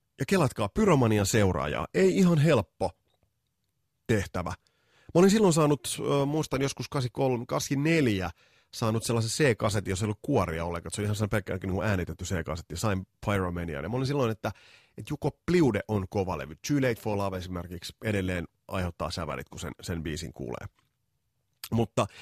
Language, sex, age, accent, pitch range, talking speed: Finnish, male, 30-49, native, 90-125 Hz, 150 wpm